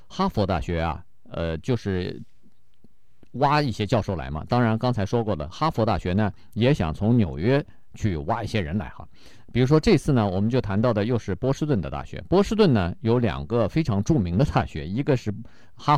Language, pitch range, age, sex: Chinese, 95-125 Hz, 50-69, male